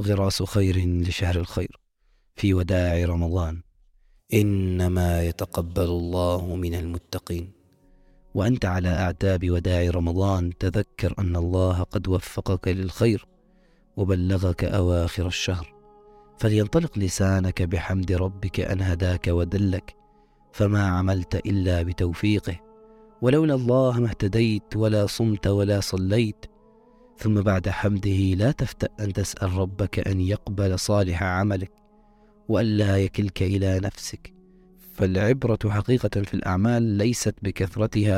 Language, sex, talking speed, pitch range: Arabic, male, 105 wpm, 90-110 Hz